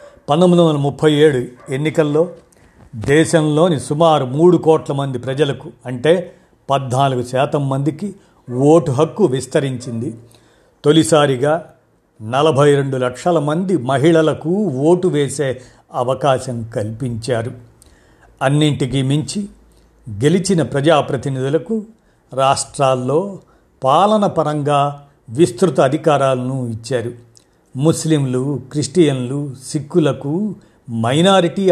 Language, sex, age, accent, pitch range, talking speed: Telugu, male, 50-69, native, 125-160 Hz, 80 wpm